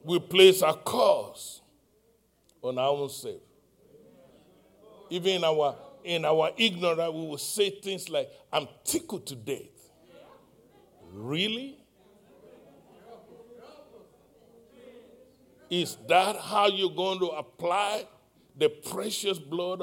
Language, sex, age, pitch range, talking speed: English, male, 60-79, 160-220 Hz, 105 wpm